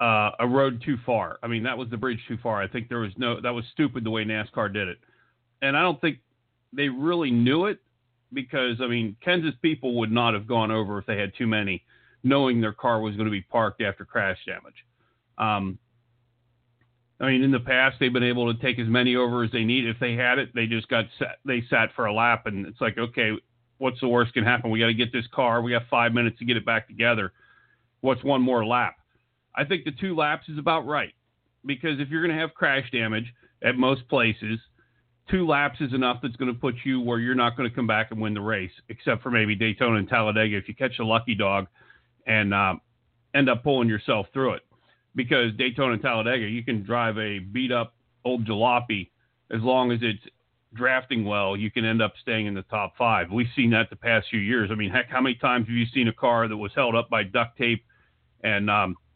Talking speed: 235 wpm